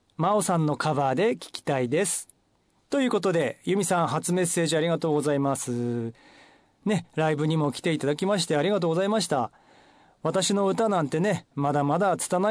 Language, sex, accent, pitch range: Japanese, male, native, 145-195 Hz